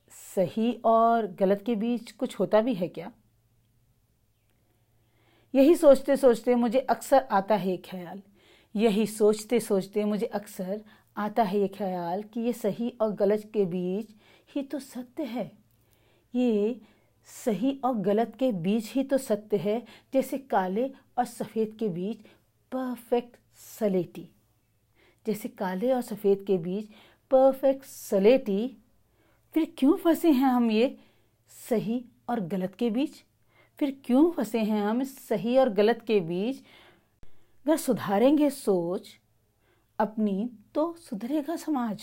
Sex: female